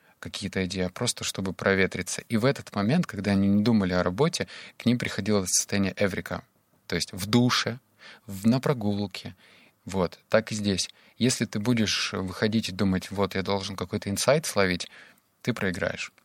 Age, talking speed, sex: 20-39, 170 wpm, male